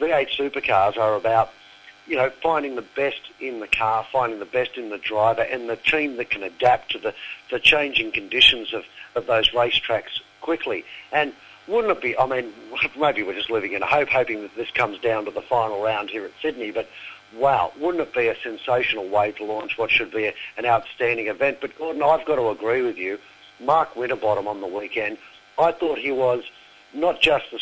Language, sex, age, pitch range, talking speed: English, male, 50-69, 115-170 Hz, 205 wpm